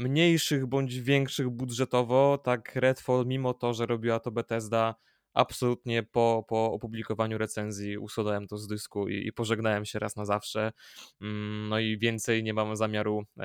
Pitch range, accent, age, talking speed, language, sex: 110-125 Hz, native, 20-39, 150 wpm, Polish, male